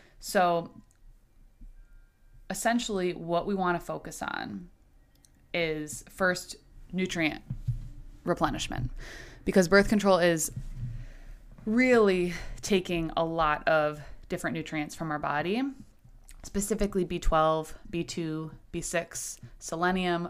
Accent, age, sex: American, 20-39, female